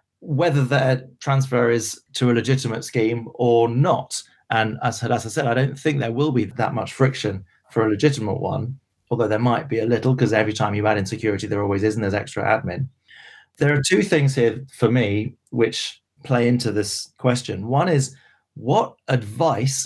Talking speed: 195 wpm